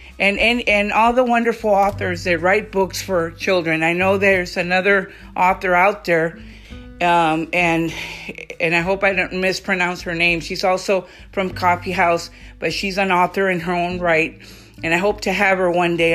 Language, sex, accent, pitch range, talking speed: English, female, American, 165-195 Hz, 185 wpm